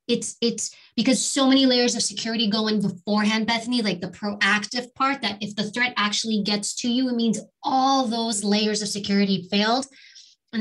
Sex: female